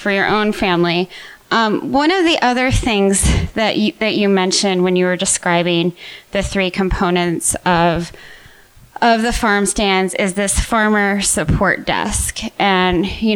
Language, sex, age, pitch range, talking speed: English, female, 20-39, 175-210 Hz, 155 wpm